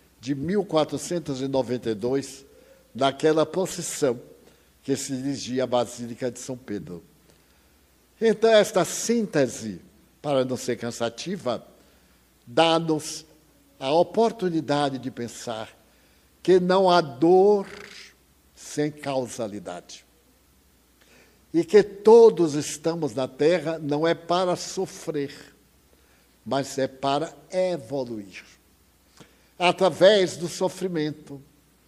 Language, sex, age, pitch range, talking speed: Portuguese, male, 60-79, 125-175 Hz, 90 wpm